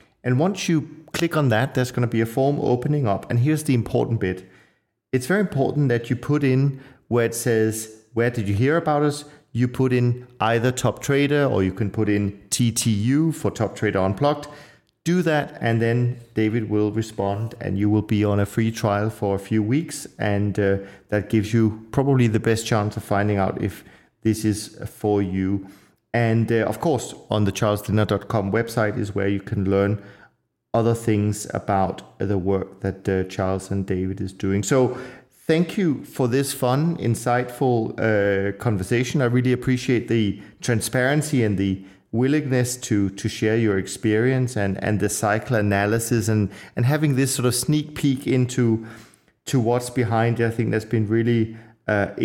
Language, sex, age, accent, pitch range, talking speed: English, male, 40-59, German, 105-125 Hz, 180 wpm